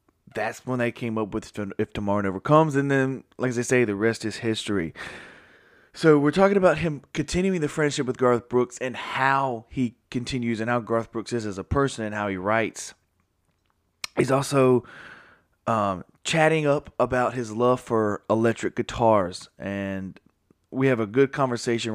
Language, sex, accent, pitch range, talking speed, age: English, male, American, 100-135 Hz, 170 wpm, 20-39